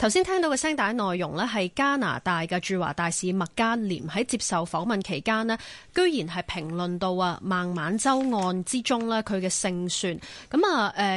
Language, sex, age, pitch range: Chinese, female, 20-39, 180-245 Hz